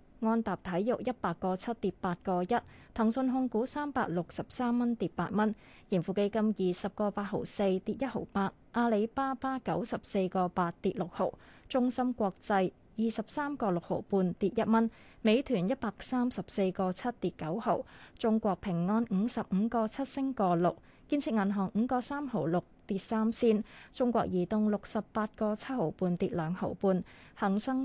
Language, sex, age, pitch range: Chinese, female, 20-39, 185-235 Hz